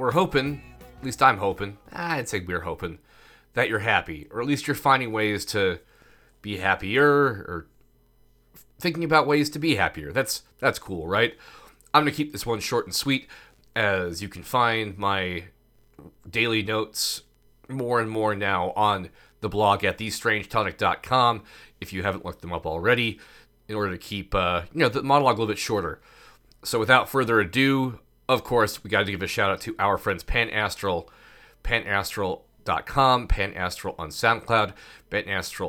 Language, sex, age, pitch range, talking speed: English, male, 30-49, 95-125 Hz, 170 wpm